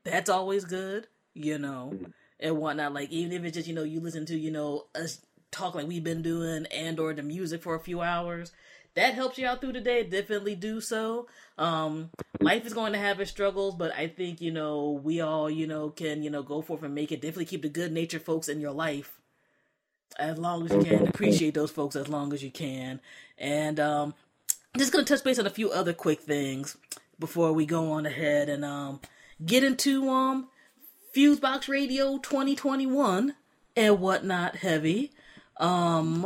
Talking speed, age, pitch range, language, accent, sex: 205 wpm, 20-39, 155-195 Hz, English, American, female